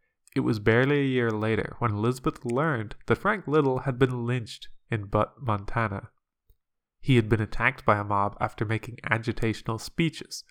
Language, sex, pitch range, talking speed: English, male, 105-135 Hz, 165 wpm